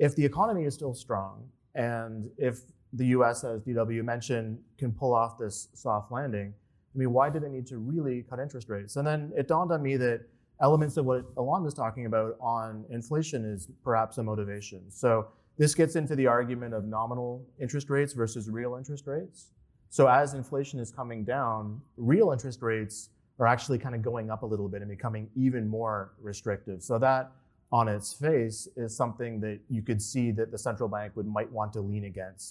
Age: 30-49